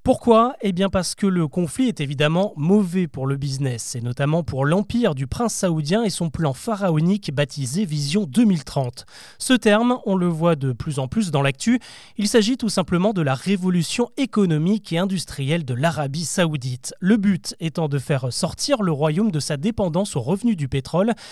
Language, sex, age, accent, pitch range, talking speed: French, male, 30-49, French, 145-210 Hz, 185 wpm